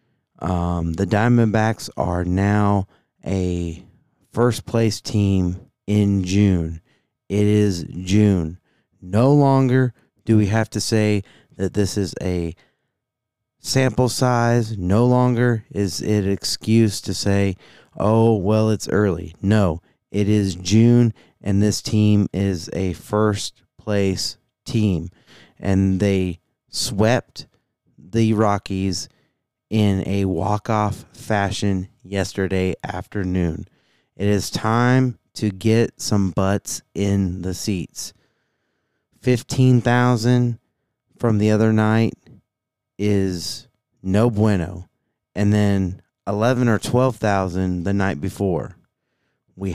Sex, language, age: male, English, 30-49